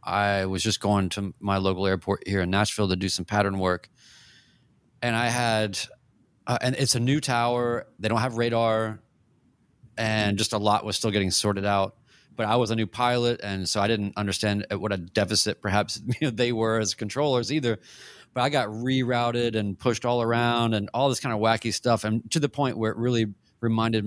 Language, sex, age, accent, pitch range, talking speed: English, male, 30-49, American, 100-120 Hz, 200 wpm